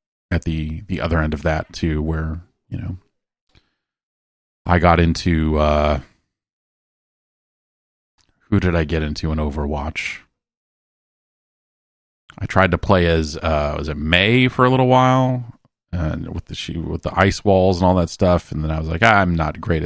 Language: English